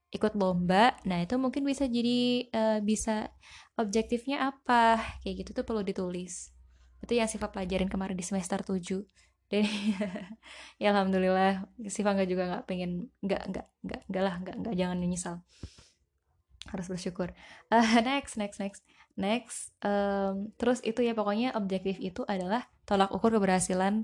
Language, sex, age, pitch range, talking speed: Indonesian, female, 10-29, 185-230 Hz, 140 wpm